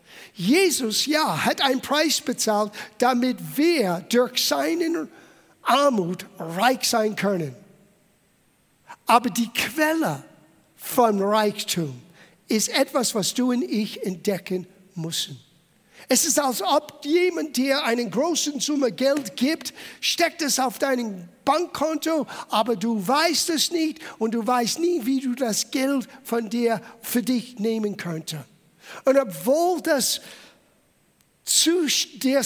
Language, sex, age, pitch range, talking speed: German, male, 50-69, 200-280 Hz, 125 wpm